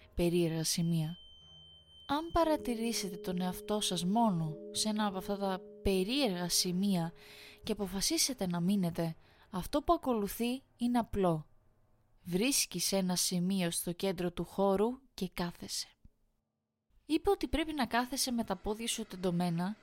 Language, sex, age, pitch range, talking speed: Greek, female, 20-39, 175-235 Hz, 130 wpm